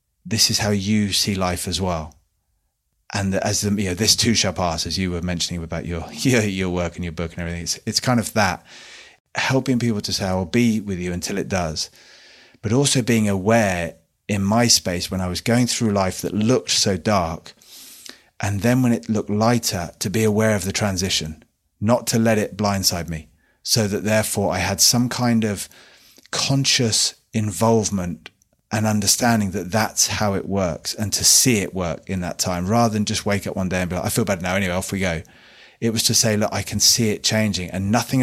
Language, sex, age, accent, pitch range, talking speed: English, male, 30-49, British, 90-110 Hz, 215 wpm